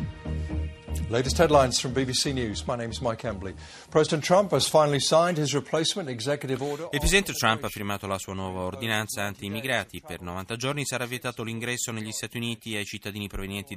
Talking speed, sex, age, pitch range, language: 95 wpm, male, 30-49, 95-125 Hz, Italian